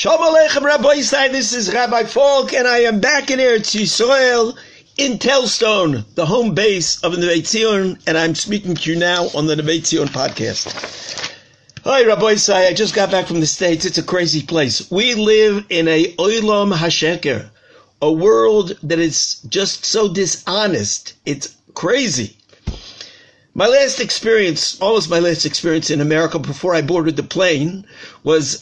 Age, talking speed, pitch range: 50-69, 155 wpm, 160-225 Hz